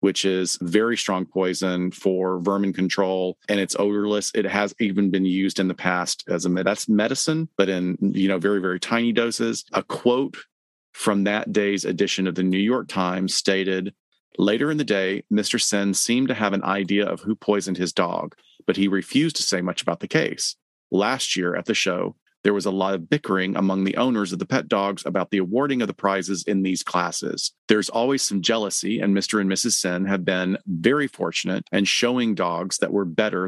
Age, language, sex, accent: 40-59, English, male, American